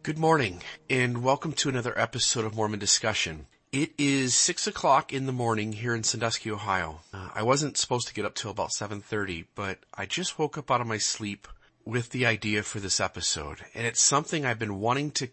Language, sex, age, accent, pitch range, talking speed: English, male, 30-49, American, 105-125 Hz, 210 wpm